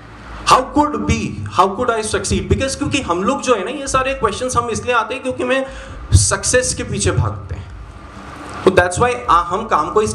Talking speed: 160 wpm